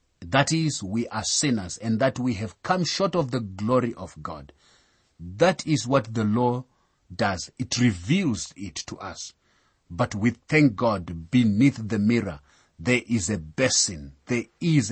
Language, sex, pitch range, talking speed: English, male, 100-145 Hz, 160 wpm